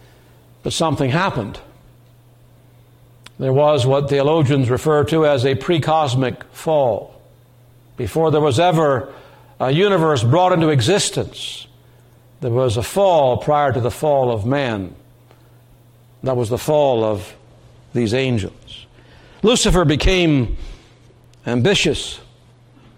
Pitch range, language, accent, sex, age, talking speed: 120-160 Hz, English, American, male, 60-79, 110 wpm